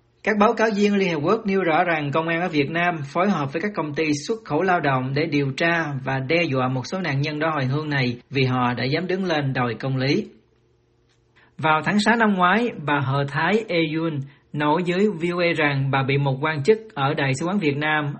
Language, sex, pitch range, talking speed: Vietnamese, male, 140-170 Hz, 240 wpm